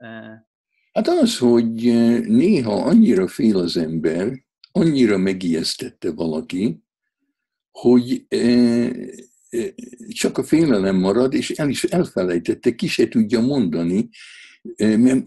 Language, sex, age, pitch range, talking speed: Hungarian, male, 60-79, 85-130 Hz, 100 wpm